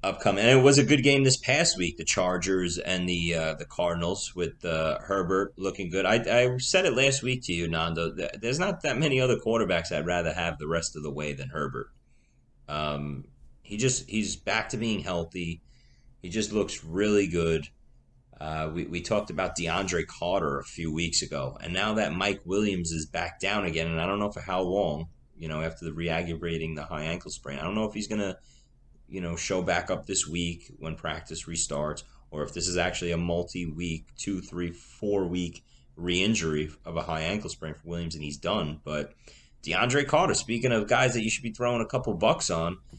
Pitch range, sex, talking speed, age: 80-115 Hz, male, 205 wpm, 30-49